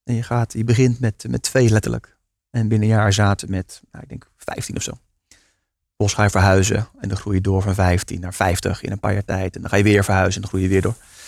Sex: male